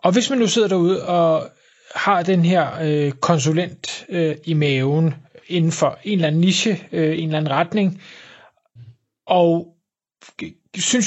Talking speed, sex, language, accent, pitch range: 155 wpm, male, Danish, native, 155-190 Hz